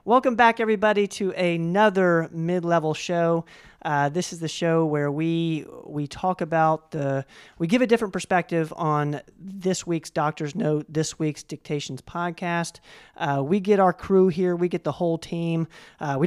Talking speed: 165 wpm